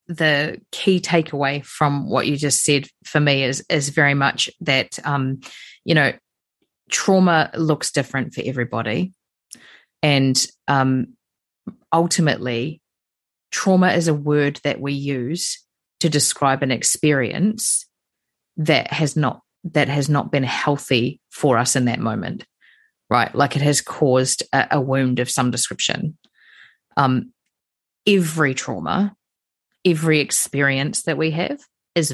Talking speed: 130 wpm